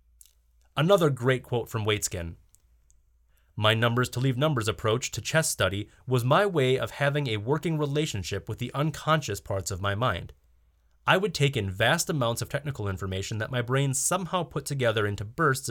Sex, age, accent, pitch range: male, 30-49, American, 95-150 Hz